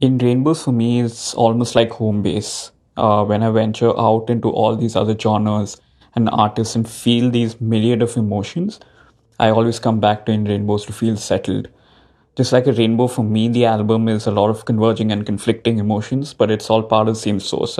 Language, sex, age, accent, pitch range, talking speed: English, male, 20-39, Indian, 110-185 Hz, 205 wpm